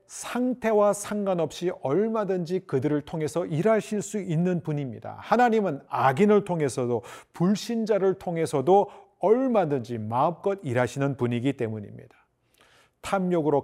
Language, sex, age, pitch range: Korean, male, 40-59, 125-190 Hz